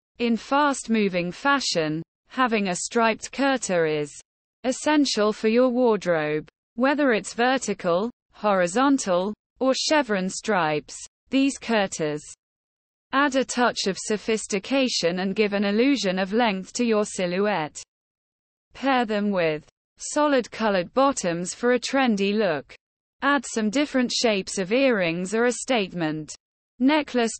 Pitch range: 185-255 Hz